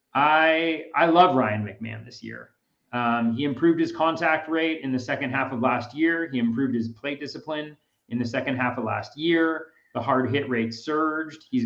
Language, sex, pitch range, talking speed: English, male, 120-155 Hz, 195 wpm